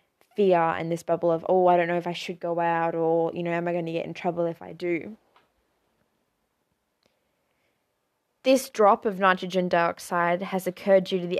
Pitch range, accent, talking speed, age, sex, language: 175-205 Hz, Australian, 195 wpm, 20-39, female, English